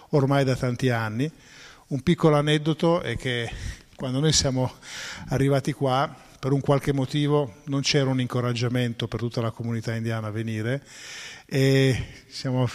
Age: 50-69